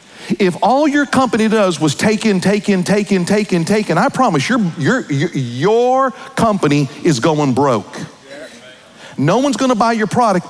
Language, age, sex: English, 40-59, male